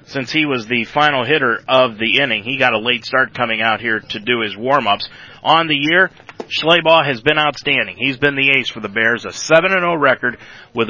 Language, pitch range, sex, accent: English, 120-155 Hz, male, American